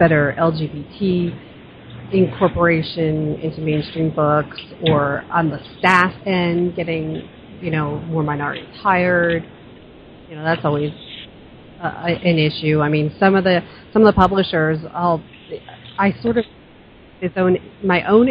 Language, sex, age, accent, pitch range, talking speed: English, female, 40-59, American, 165-205 Hz, 135 wpm